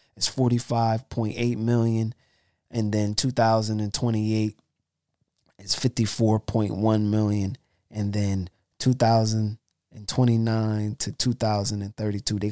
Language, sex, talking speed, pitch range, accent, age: English, male, 70 wpm, 105-120 Hz, American, 20-39